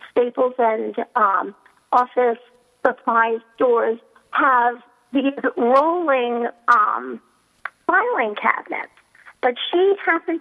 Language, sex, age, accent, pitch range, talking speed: English, female, 50-69, American, 230-275 Hz, 85 wpm